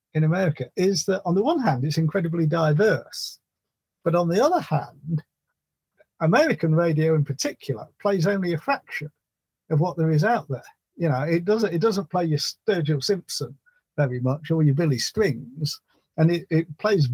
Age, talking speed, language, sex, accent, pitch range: 50-69, 175 wpm, English, male, British, 140-180 Hz